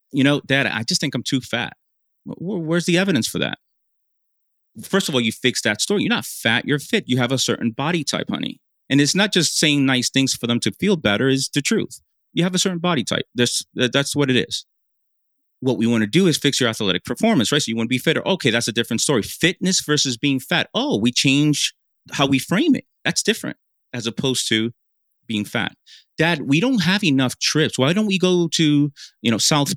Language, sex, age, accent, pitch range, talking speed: English, male, 30-49, American, 120-155 Hz, 230 wpm